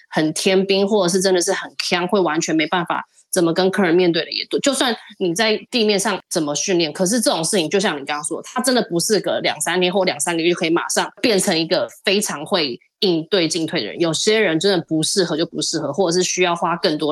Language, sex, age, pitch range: Chinese, female, 20-39, 165-205 Hz